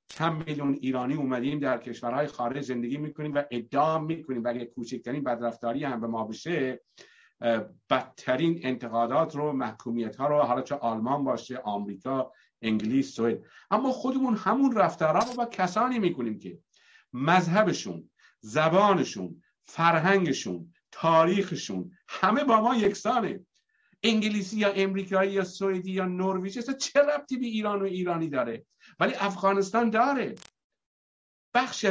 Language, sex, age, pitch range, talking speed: Persian, male, 50-69, 140-200 Hz, 130 wpm